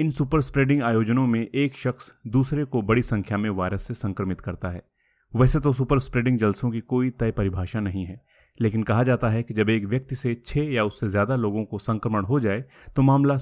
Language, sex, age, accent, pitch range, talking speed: Hindi, male, 30-49, native, 100-130 Hz, 215 wpm